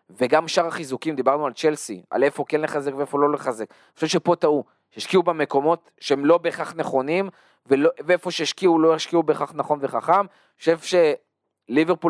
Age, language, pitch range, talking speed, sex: 20-39, Hebrew, 130-165 Hz, 170 wpm, male